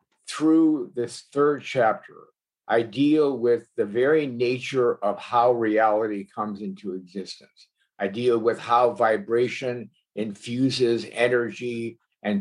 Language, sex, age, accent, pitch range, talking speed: English, male, 60-79, American, 105-145 Hz, 115 wpm